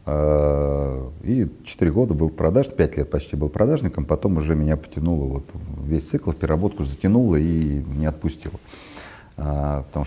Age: 40-59